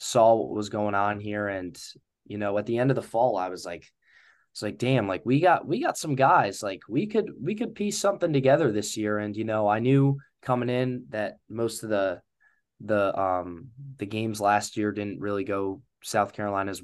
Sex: male